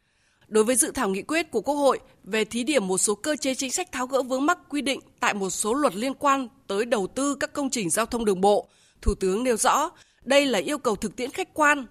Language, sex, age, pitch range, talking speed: Vietnamese, female, 20-39, 215-295 Hz, 260 wpm